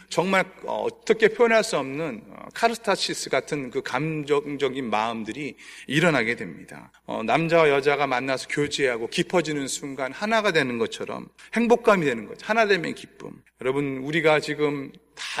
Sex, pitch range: male, 145-235 Hz